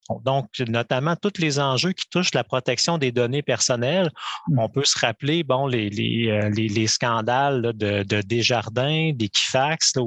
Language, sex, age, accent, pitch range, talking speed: French, male, 30-49, Canadian, 115-140 Hz, 165 wpm